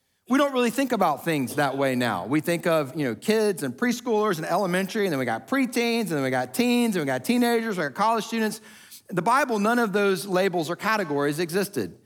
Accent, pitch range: American, 170-225 Hz